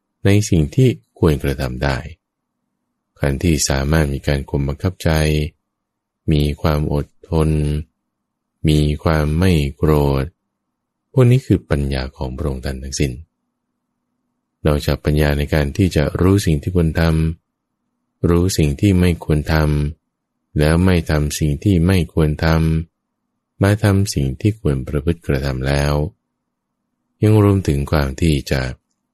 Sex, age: male, 20-39